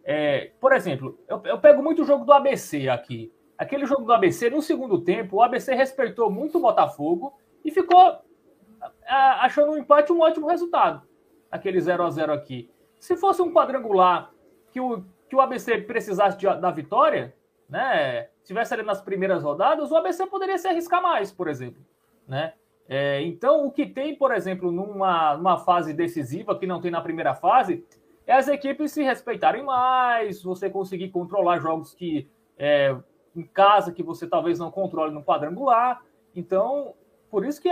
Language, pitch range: Portuguese, 180-295 Hz